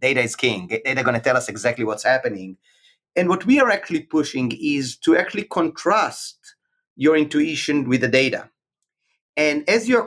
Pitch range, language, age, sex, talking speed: 130-180 Hz, English, 30-49, male, 175 wpm